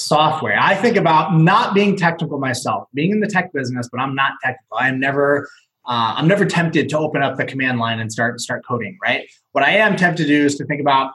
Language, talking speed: English, 230 wpm